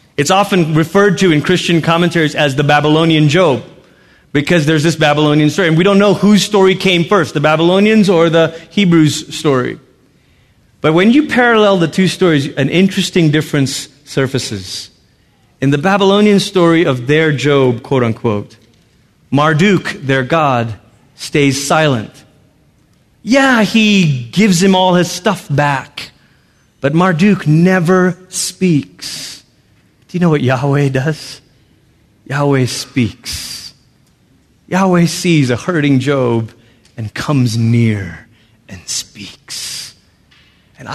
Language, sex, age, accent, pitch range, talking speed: English, male, 30-49, American, 125-180 Hz, 125 wpm